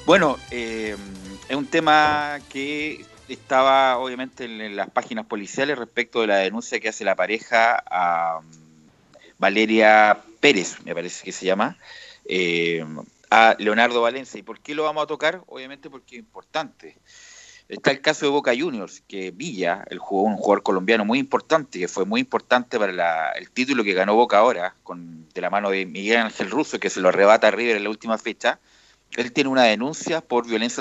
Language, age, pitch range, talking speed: Spanish, 40-59, 100-150 Hz, 185 wpm